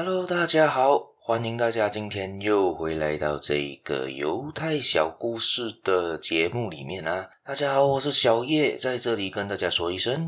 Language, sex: Chinese, male